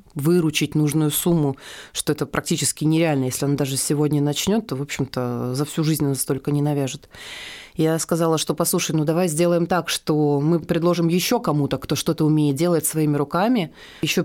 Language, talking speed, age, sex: Russian, 175 wpm, 30-49, female